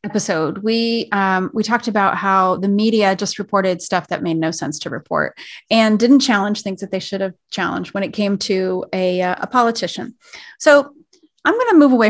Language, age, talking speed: English, 30-49, 200 wpm